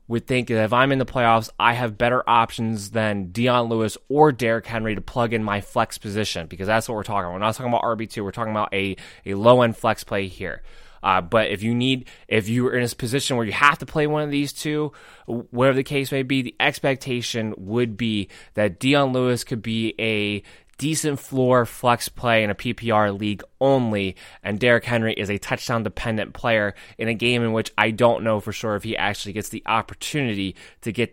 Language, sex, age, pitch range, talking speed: English, male, 20-39, 105-125 Hz, 220 wpm